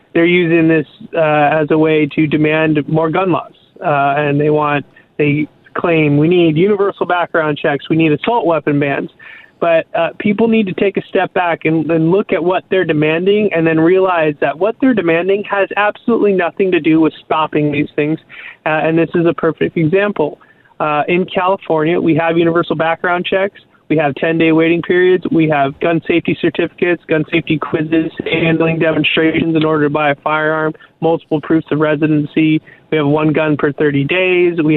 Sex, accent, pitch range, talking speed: male, American, 150-170 Hz, 185 wpm